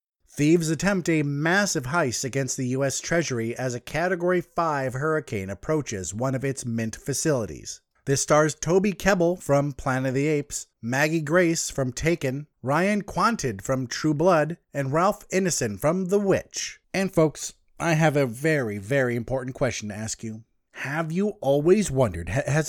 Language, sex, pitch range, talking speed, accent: English, male, 125-170 Hz, 160 wpm, American